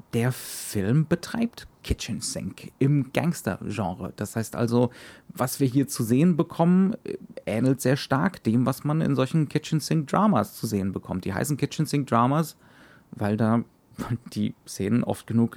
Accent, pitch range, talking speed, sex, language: German, 105-140 Hz, 150 wpm, male, German